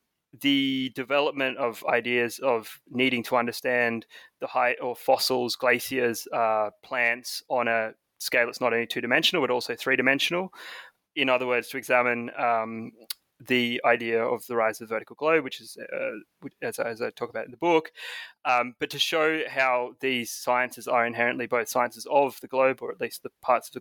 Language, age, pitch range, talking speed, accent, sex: English, 20-39, 115-135 Hz, 180 wpm, Australian, male